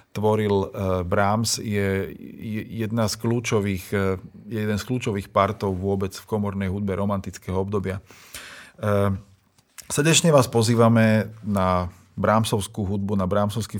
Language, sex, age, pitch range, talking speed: Slovak, male, 40-59, 100-115 Hz, 90 wpm